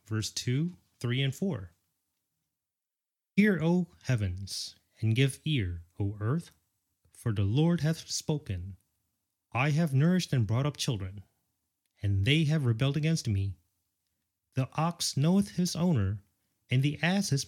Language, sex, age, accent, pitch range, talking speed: English, male, 30-49, American, 100-155 Hz, 135 wpm